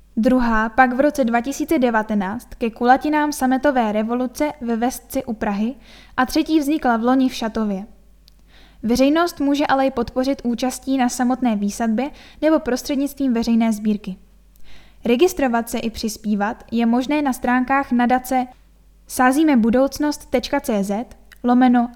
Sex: female